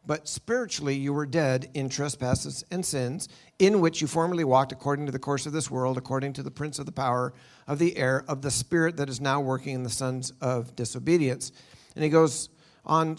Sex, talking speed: male, 215 wpm